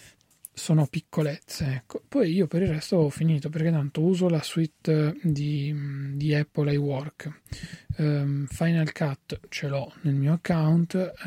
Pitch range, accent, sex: 145-165 Hz, native, male